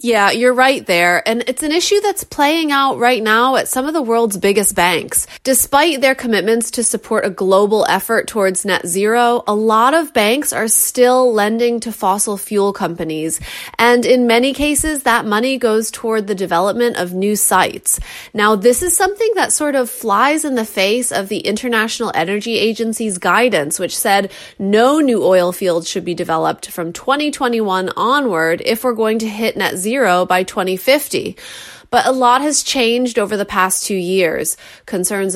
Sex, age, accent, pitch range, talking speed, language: female, 30-49, American, 195-255 Hz, 175 wpm, English